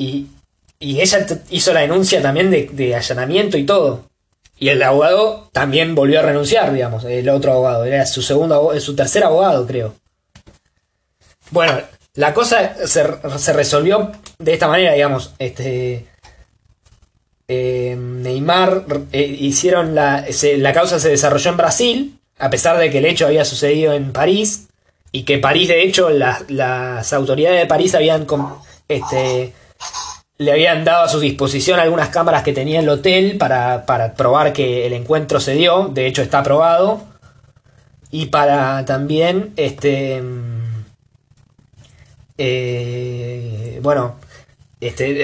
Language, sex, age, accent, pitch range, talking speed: Spanish, male, 20-39, Argentinian, 125-160 Hz, 140 wpm